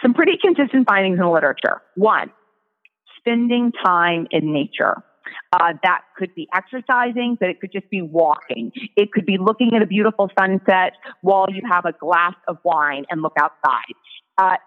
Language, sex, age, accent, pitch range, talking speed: English, female, 30-49, American, 175-240 Hz, 170 wpm